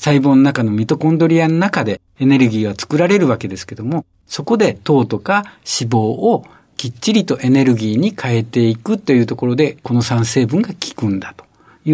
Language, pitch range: Japanese, 115-180 Hz